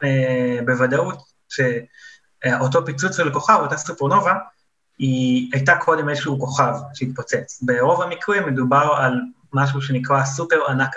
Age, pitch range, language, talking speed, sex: 30-49, 125-145 Hz, Hebrew, 120 wpm, male